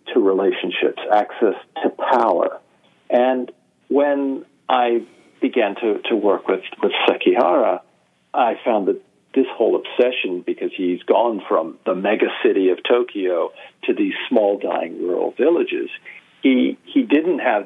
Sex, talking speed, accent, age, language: male, 135 wpm, American, 50-69, English